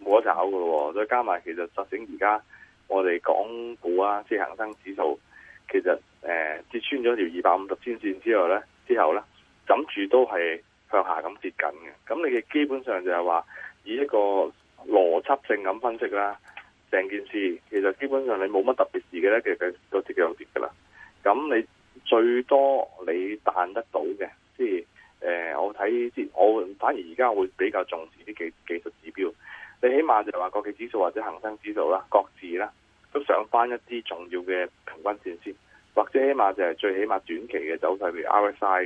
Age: 20-39